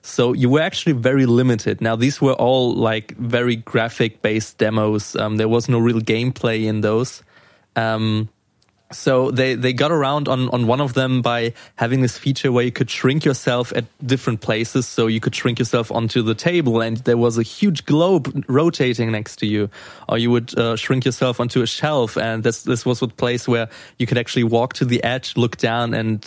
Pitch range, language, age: 115-135 Hz, English, 20-39